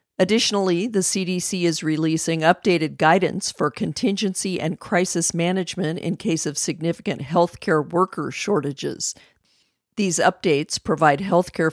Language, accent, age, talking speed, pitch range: English, American, 50-69, 120 wpm, 155-185 Hz